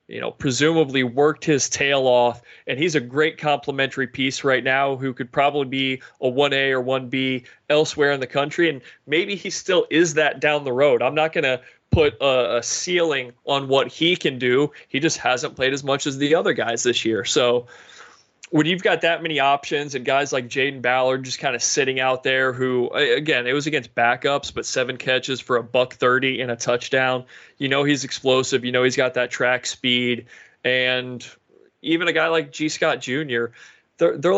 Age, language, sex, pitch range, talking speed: 30-49, English, male, 130-155 Hz, 200 wpm